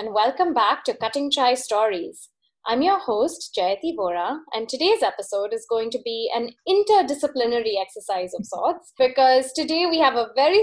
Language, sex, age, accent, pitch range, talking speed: English, female, 20-39, Indian, 220-285 Hz, 170 wpm